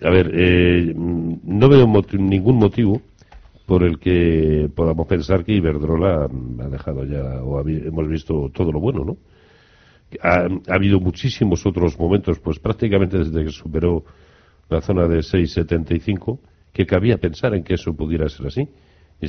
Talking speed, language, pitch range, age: 160 wpm, Spanish, 80-95 Hz, 60-79